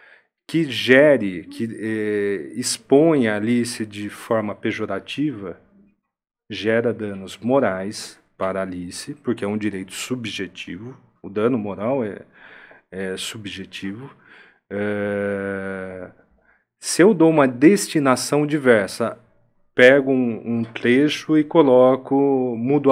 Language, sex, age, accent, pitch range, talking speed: Portuguese, male, 40-59, Brazilian, 100-140 Hz, 105 wpm